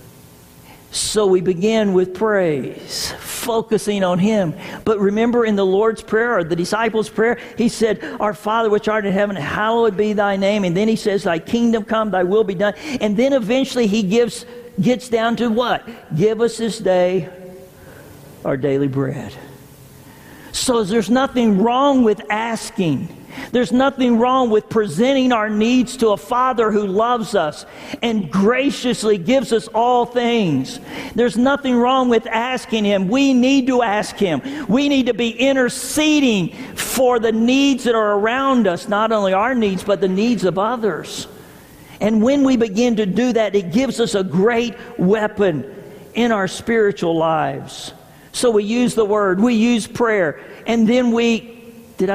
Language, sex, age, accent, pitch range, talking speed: English, male, 50-69, American, 200-240 Hz, 165 wpm